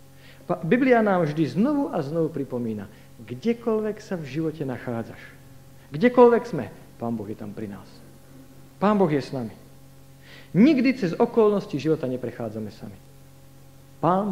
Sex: male